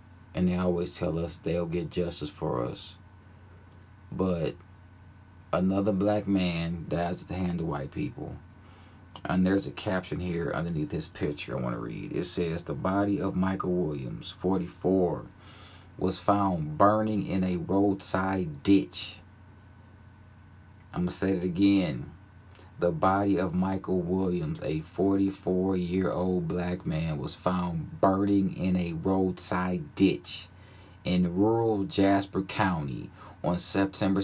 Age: 30-49